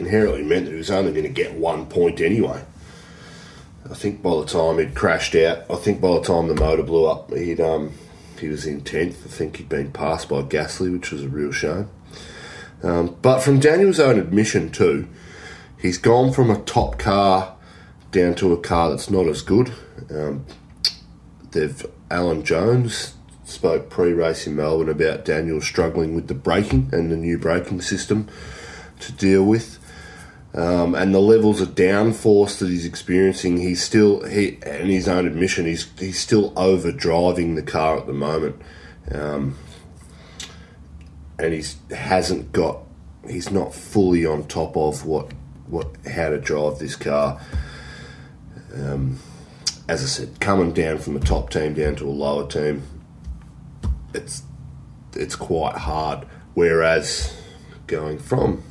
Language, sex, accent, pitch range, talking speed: English, male, Australian, 75-95 Hz, 160 wpm